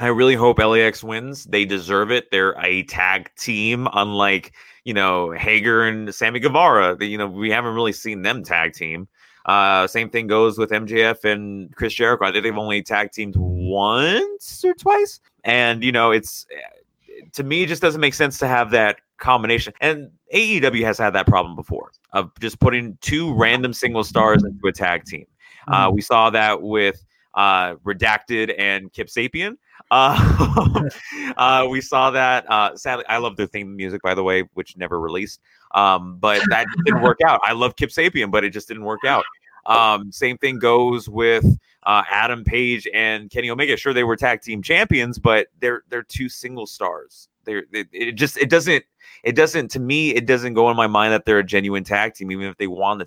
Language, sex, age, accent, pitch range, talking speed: English, male, 30-49, American, 100-125 Hz, 195 wpm